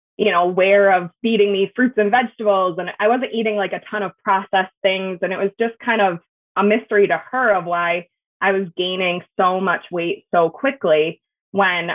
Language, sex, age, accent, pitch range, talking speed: English, female, 20-39, American, 180-210 Hz, 200 wpm